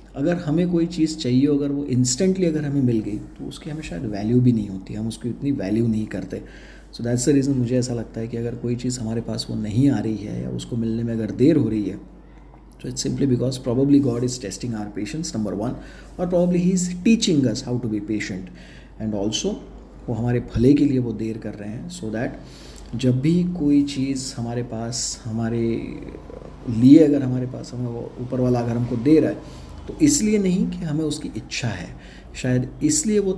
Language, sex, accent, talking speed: Hindi, male, native, 220 wpm